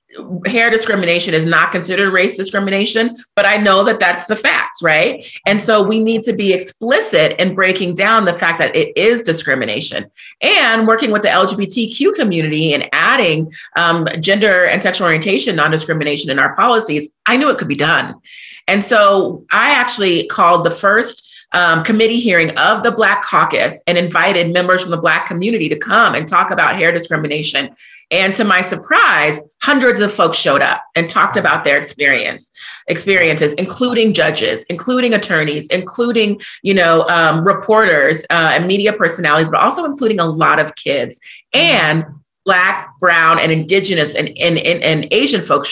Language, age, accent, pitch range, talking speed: English, 30-49, American, 165-220 Hz, 165 wpm